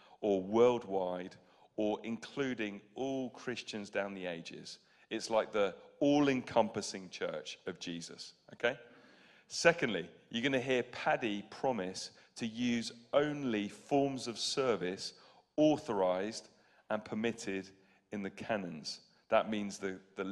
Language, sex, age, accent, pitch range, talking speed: English, male, 40-59, British, 100-125 Hz, 120 wpm